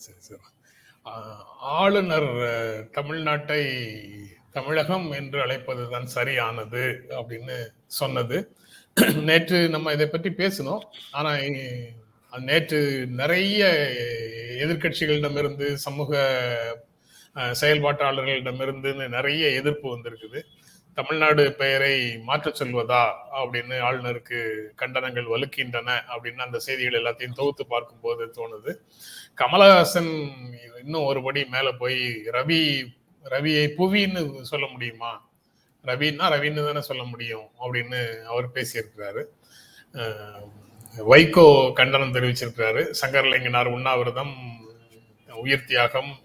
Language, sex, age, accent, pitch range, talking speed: Tamil, male, 30-49, native, 120-150 Hz, 75 wpm